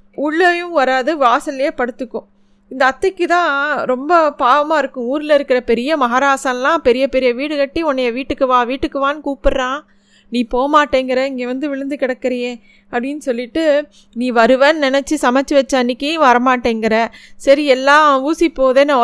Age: 20-39